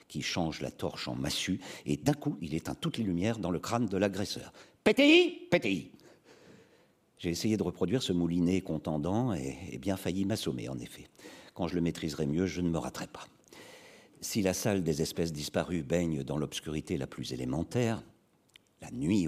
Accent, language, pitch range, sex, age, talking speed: French, French, 80-110 Hz, male, 50-69, 185 wpm